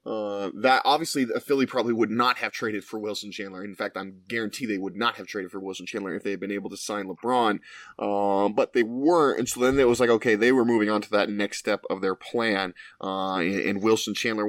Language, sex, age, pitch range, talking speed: English, male, 20-39, 100-130 Hz, 255 wpm